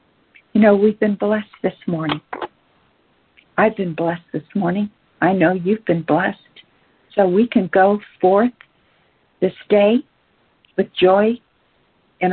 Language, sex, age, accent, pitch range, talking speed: English, female, 60-79, American, 185-215 Hz, 130 wpm